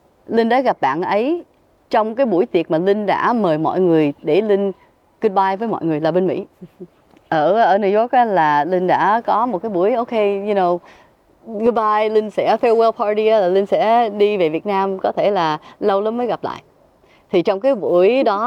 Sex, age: female, 20-39